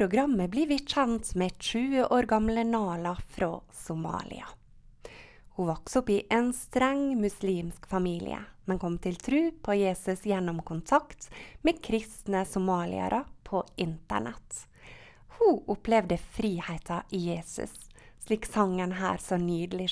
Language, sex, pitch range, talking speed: English, female, 175-230 Hz, 120 wpm